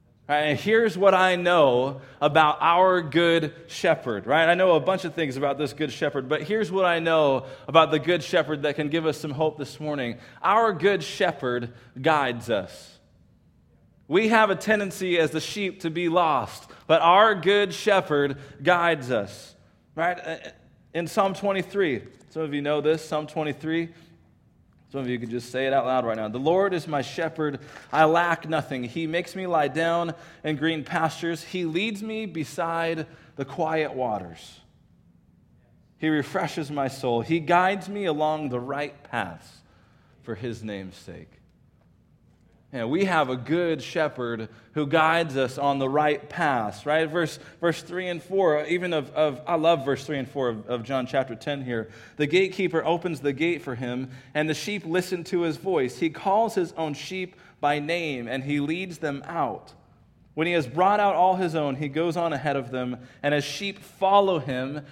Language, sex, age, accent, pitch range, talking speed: English, male, 20-39, American, 140-175 Hz, 180 wpm